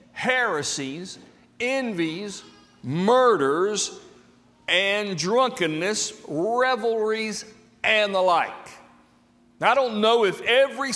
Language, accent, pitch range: English, American, 135-225 Hz